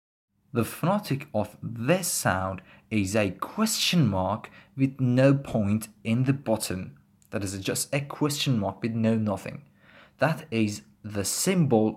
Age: 20-39